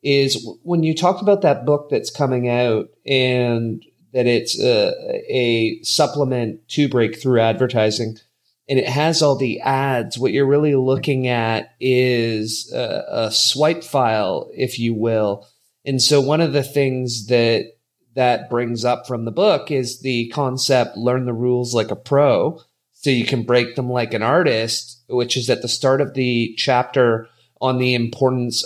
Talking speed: 165 wpm